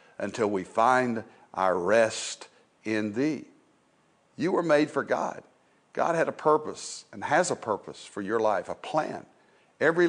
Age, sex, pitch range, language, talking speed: 60-79, male, 125-180 Hz, English, 155 wpm